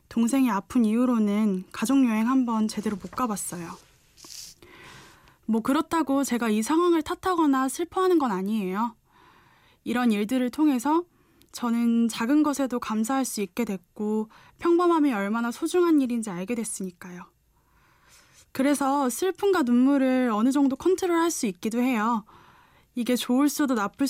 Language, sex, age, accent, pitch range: Korean, female, 10-29, native, 215-275 Hz